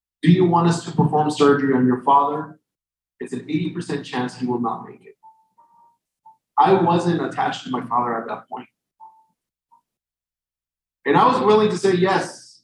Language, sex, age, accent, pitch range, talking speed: English, male, 30-49, American, 115-150 Hz, 170 wpm